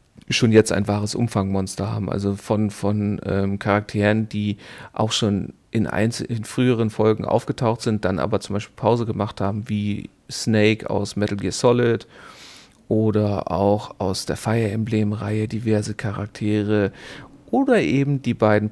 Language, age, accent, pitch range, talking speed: German, 40-59, German, 105-130 Hz, 145 wpm